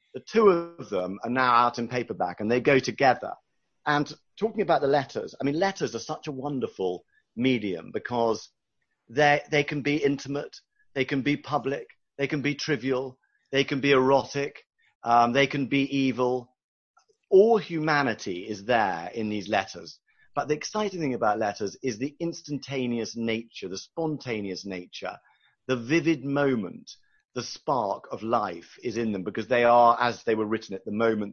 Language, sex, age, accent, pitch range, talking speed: English, male, 40-59, British, 115-145 Hz, 170 wpm